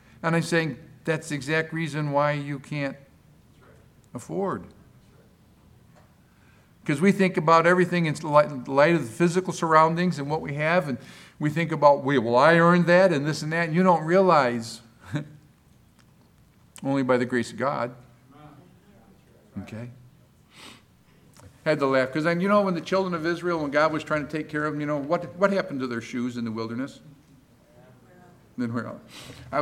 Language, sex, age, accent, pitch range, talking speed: English, male, 50-69, American, 125-160 Hz, 170 wpm